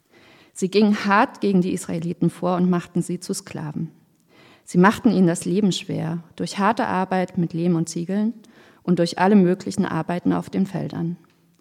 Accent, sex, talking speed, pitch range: German, female, 170 wpm, 170-200 Hz